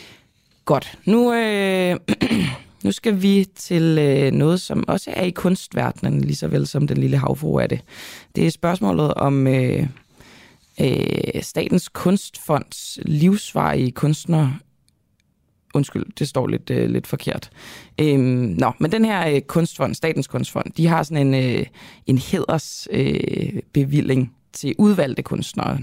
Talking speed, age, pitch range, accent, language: 140 wpm, 20-39, 130-170 Hz, native, Danish